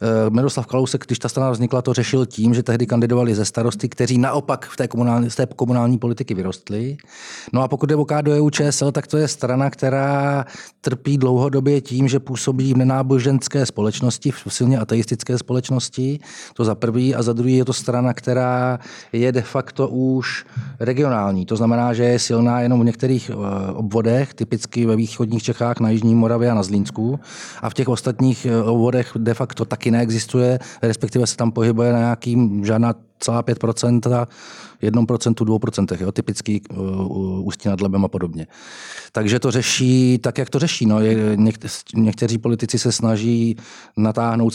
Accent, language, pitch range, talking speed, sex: native, Czech, 110-125 Hz, 165 wpm, male